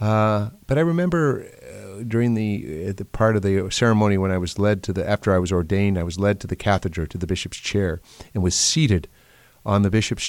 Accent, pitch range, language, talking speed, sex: American, 95-120 Hz, English, 220 wpm, male